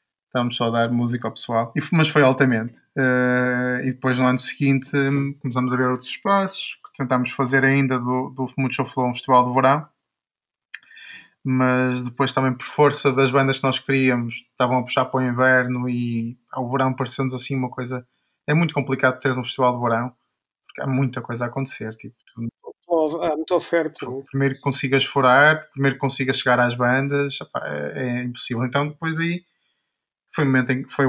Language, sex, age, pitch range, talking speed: Portuguese, male, 20-39, 120-135 Hz, 170 wpm